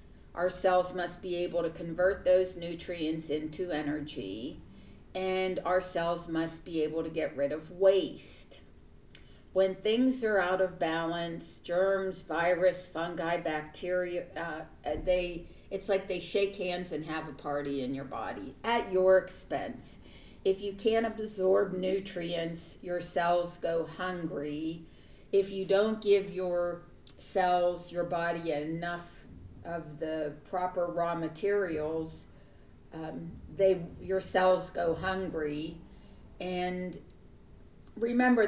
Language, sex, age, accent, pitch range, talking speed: English, female, 50-69, American, 165-190 Hz, 125 wpm